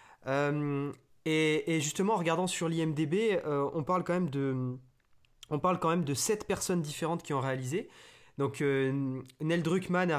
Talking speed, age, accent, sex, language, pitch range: 165 wpm, 20-39, French, male, French, 135-175 Hz